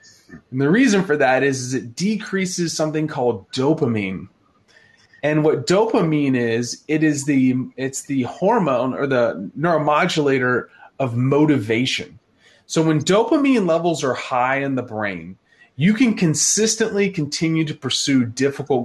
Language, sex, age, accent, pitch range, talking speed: English, male, 30-49, American, 130-165 Hz, 130 wpm